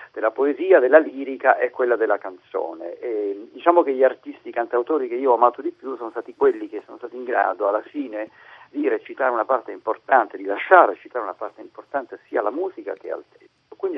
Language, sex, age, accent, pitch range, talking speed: Italian, male, 50-69, native, 325-440 Hz, 210 wpm